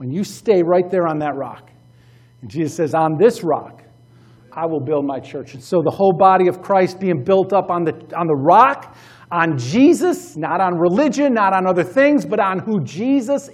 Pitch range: 135-195 Hz